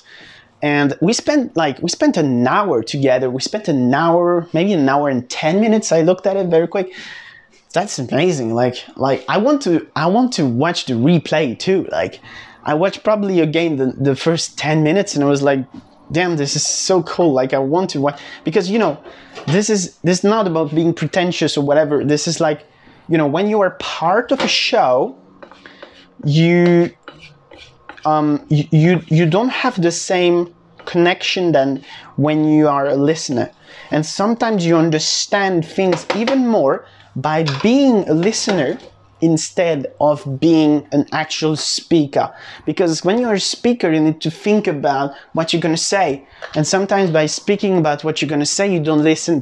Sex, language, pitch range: male, English, 145-190 Hz